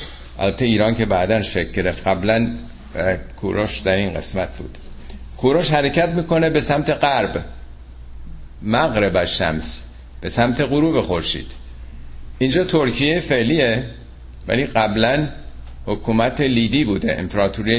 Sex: male